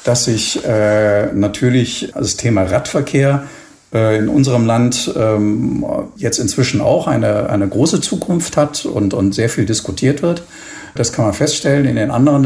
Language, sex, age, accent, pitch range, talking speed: German, male, 50-69, German, 105-135 Hz, 160 wpm